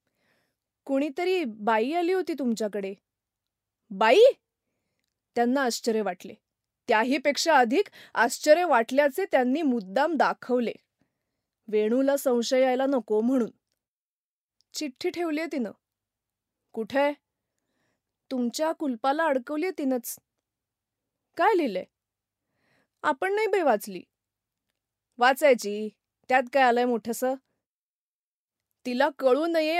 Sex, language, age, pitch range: female, Marathi, 20-39, 235-305 Hz